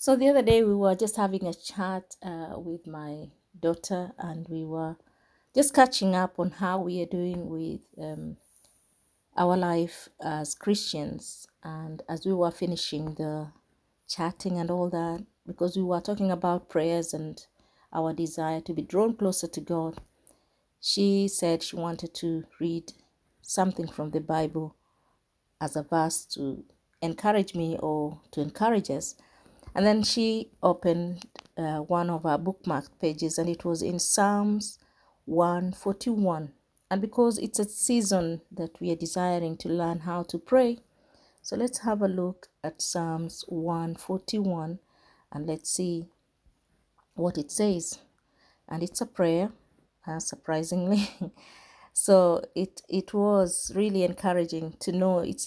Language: English